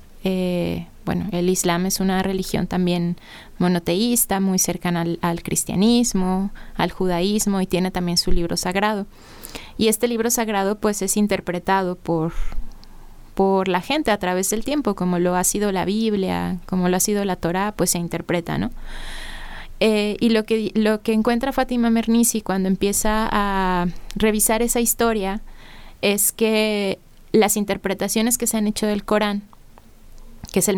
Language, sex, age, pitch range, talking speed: Spanish, female, 20-39, 185-215 Hz, 160 wpm